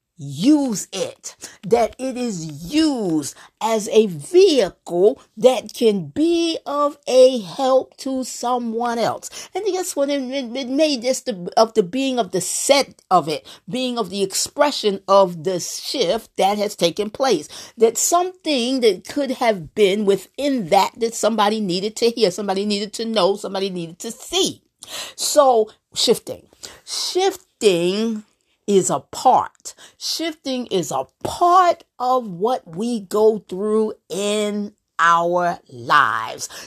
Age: 50-69